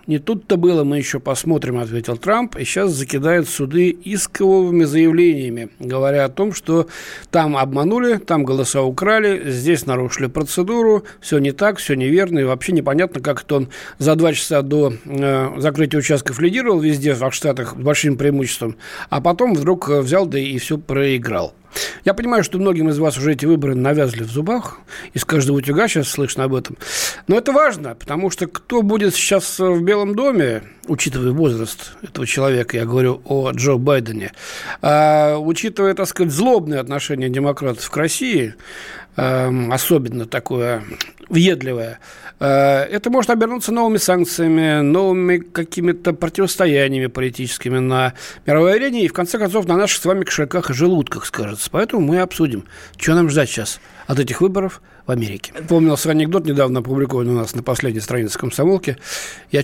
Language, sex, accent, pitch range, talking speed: Russian, male, native, 130-180 Hz, 160 wpm